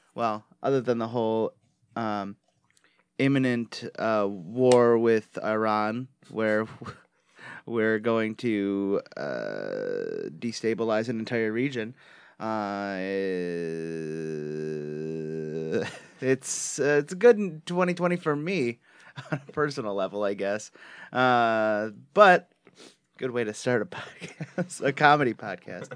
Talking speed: 105 wpm